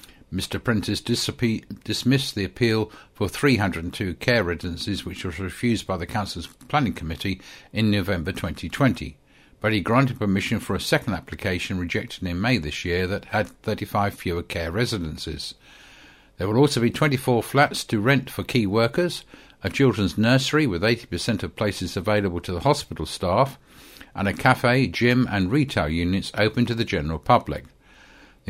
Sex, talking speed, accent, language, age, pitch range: male, 160 wpm, British, English, 50-69, 90-115 Hz